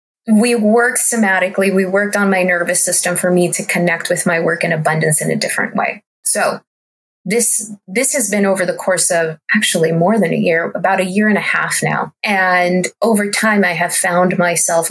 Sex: female